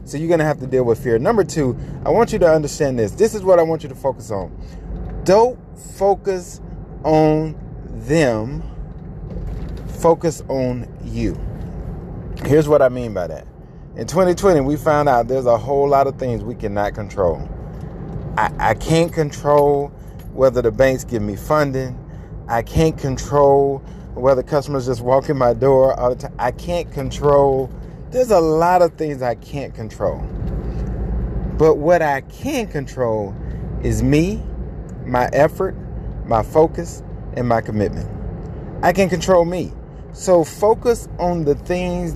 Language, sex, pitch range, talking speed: English, male, 125-165 Hz, 155 wpm